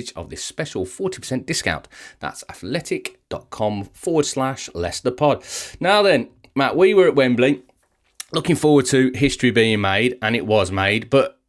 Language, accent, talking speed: English, British, 145 wpm